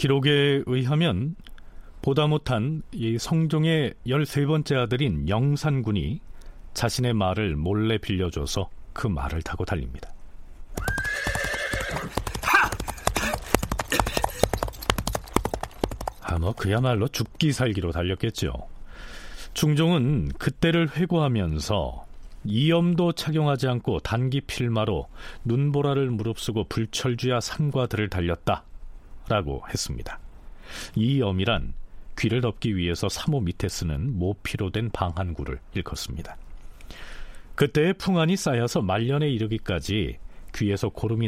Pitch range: 90-145 Hz